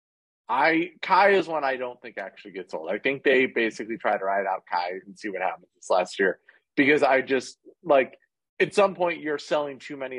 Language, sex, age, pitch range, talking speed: English, male, 30-49, 115-175 Hz, 220 wpm